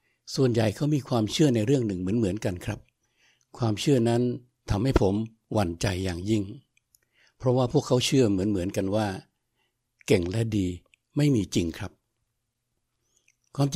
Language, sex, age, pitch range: Thai, male, 60-79, 105-130 Hz